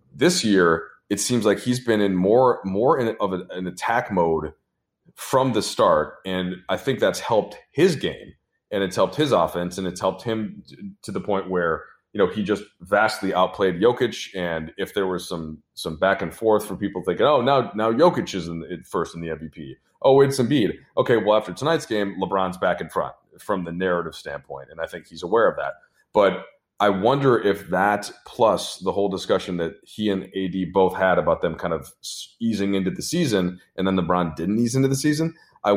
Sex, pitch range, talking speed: male, 90-105 Hz, 210 wpm